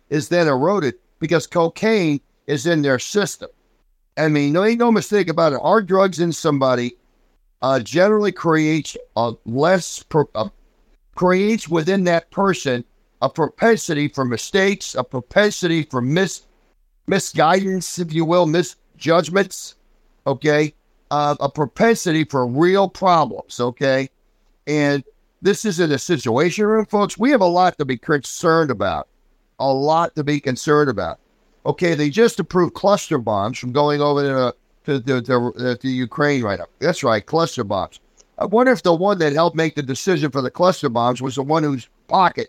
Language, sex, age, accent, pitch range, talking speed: English, male, 60-79, American, 140-185 Hz, 160 wpm